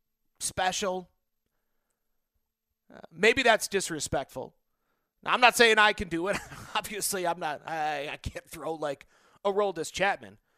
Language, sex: English, male